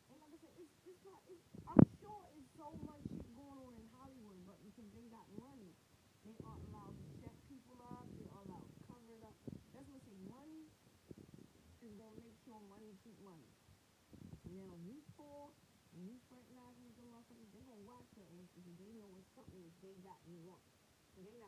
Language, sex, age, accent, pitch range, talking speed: English, female, 40-59, American, 190-240 Hz, 210 wpm